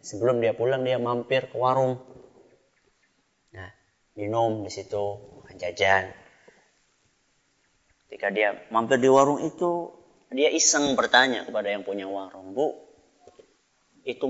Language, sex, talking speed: Malay, male, 115 wpm